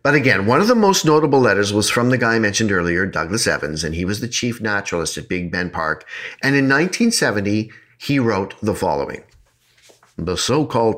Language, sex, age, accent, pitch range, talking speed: English, male, 50-69, American, 90-115 Hz, 195 wpm